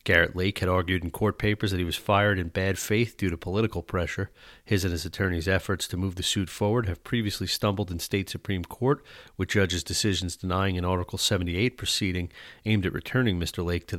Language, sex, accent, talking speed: English, male, American, 210 wpm